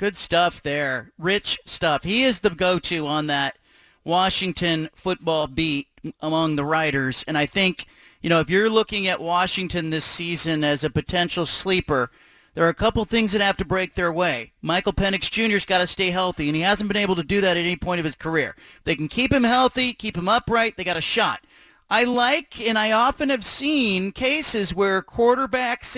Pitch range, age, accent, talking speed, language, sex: 175-230 Hz, 40-59, American, 205 wpm, English, male